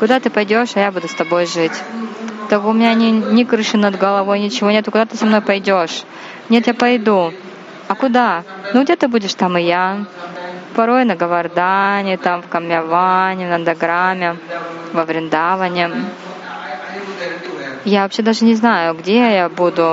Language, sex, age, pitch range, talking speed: Russian, female, 20-39, 180-230 Hz, 165 wpm